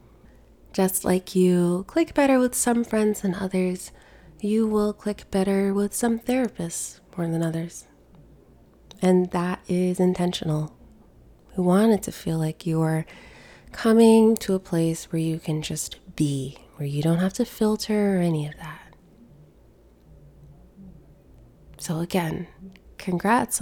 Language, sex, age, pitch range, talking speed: English, female, 20-39, 170-210 Hz, 135 wpm